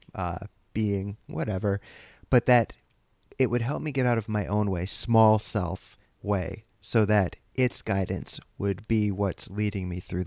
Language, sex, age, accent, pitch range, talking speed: English, male, 30-49, American, 95-115 Hz, 165 wpm